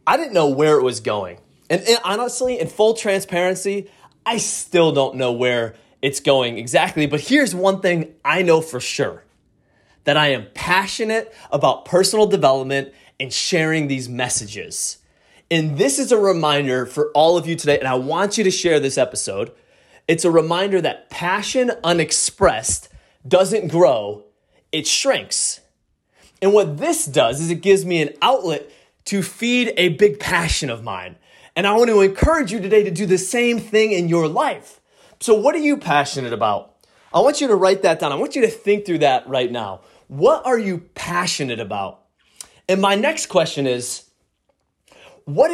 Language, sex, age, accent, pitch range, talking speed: English, male, 20-39, American, 140-210 Hz, 175 wpm